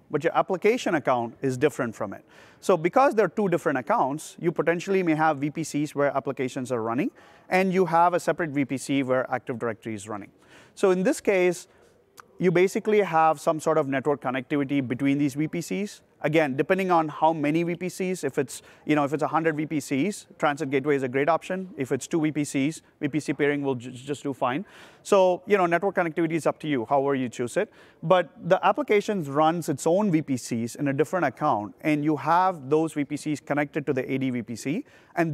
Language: English